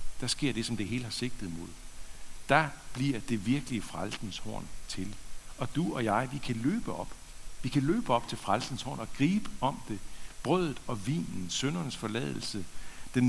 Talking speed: 185 wpm